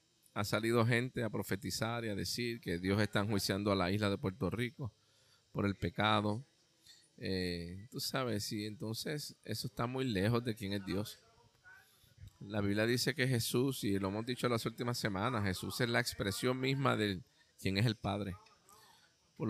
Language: Spanish